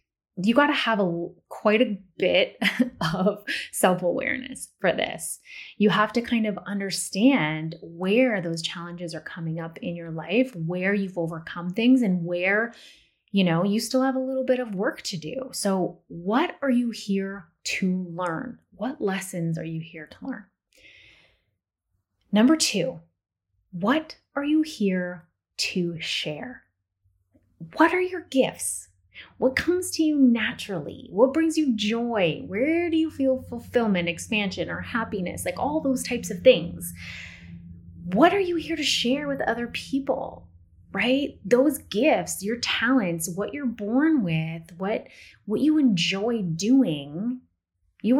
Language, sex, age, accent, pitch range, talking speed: English, female, 30-49, American, 170-255 Hz, 145 wpm